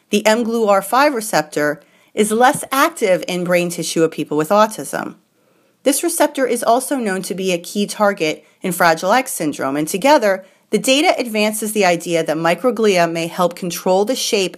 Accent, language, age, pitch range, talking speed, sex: American, English, 40-59, 175-245 Hz, 175 wpm, female